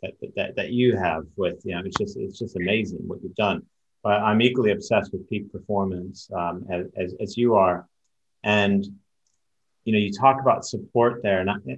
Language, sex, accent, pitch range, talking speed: English, male, American, 105-135 Hz, 195 wpm